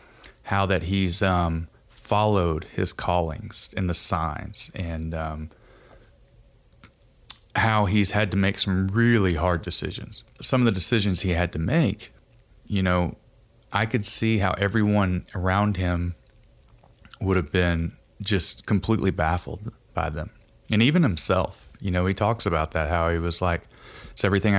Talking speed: 150 wpm